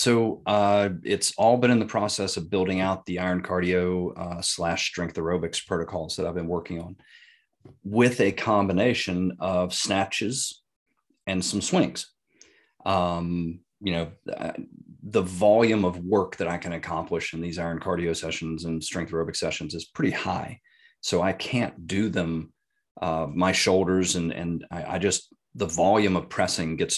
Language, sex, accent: English, male, American